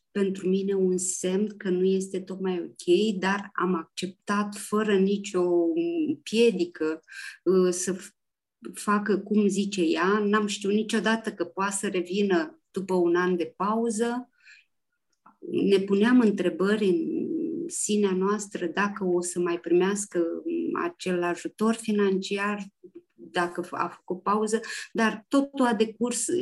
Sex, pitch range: female, 190-230 Hz